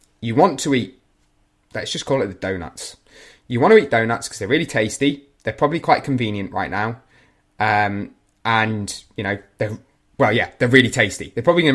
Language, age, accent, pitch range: English, 20-39, British, 105-125 Hz